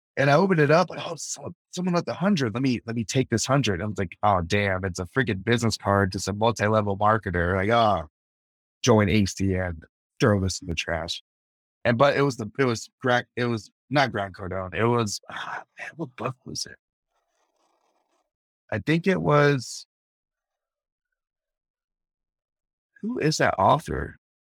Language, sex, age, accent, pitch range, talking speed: English, male, 30-49, American, 95-120 Hz, 175 wpm